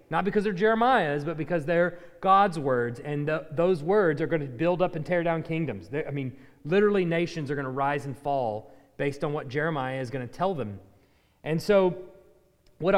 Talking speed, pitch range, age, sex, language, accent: 200 wpm, 160-210 Hz, 30-49, male, English, American